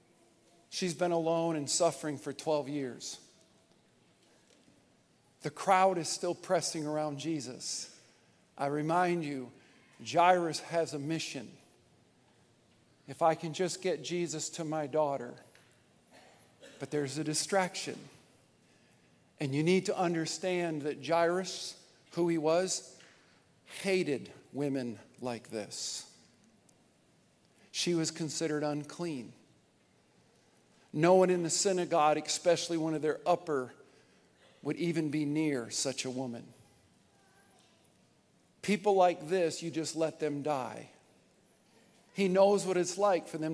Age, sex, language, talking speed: 50-69, male, English, 115 wpm